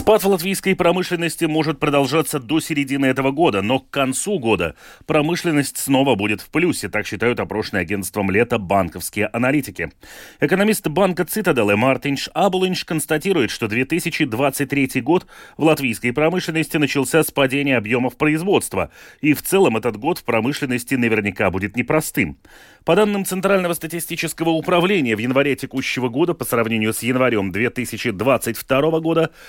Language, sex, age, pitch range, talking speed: Russian, male, 30-49, 125-170 Hz, 140 wpm